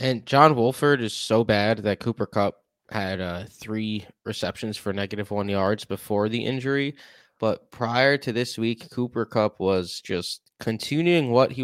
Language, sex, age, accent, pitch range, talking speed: English, male, 20-39, American, 100-120 Hz, 165 wpm